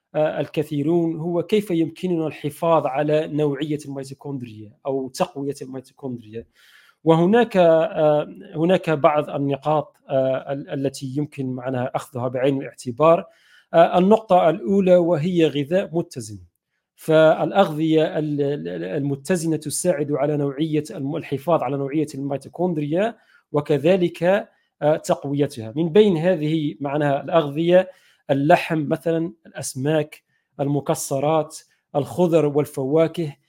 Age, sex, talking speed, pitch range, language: 40-59, male, 95 wpm, 145-170 Hz, Arabic